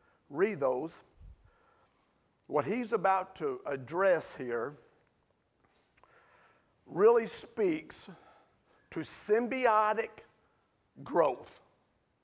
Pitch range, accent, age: 190-290 Hz, American, 40-59